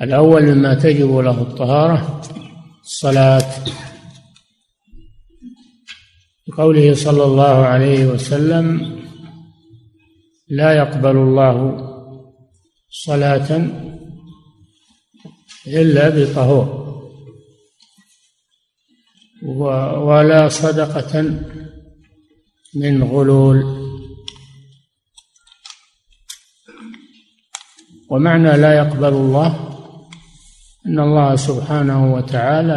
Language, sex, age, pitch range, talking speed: Arabic, male, 60-79, 135-165 Hz, 55 wpm